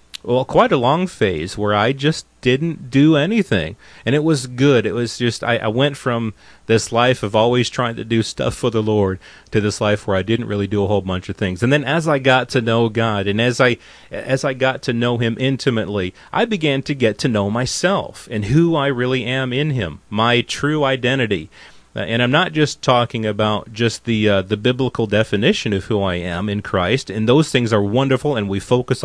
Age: 30-49